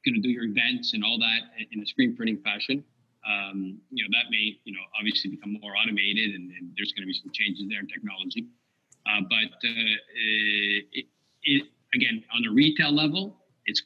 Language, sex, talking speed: English, male, 200 wpm